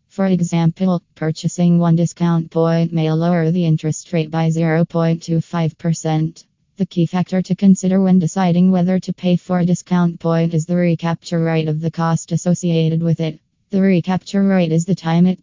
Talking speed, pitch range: 170 wpm, 160-175 Hz